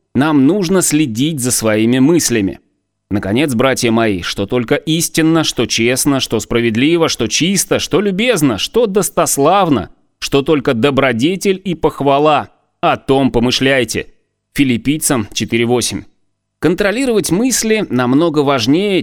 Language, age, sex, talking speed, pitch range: Russian, 30-49, male, 115 wpm, 115-170 Hz